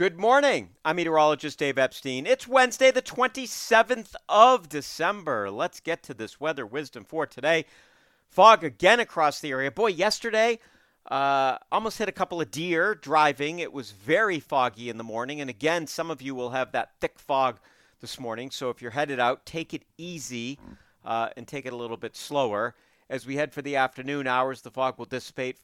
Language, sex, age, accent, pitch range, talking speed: English, male, 50-69, American, 125-175 Hz, 190 wpm